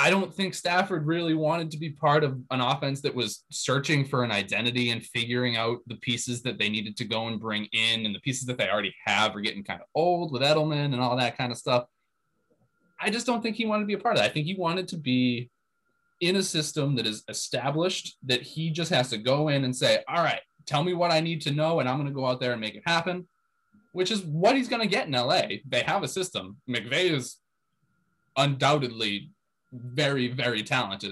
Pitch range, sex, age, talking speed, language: 125-200 Hz, male, 20-39, 235 wpm, English